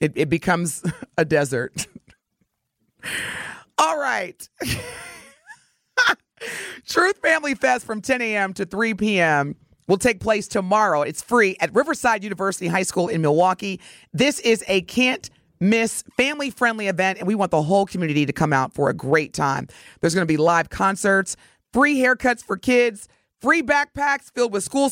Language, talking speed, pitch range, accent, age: English, 150 wpm, 175-240 Hz, American, 30-49